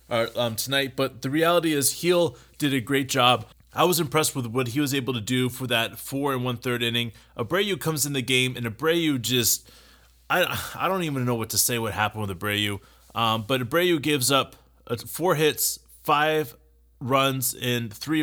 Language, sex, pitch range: English, male, 120-155 Hz